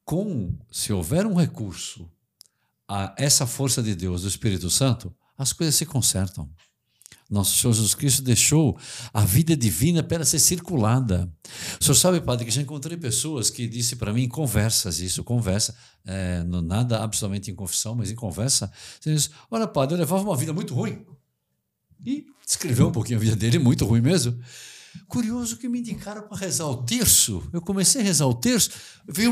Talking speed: 180 wpm